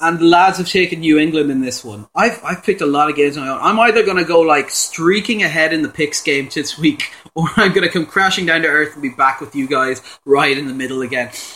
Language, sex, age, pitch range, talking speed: English, male, 30-49, 135-175 Hz, 280 wpm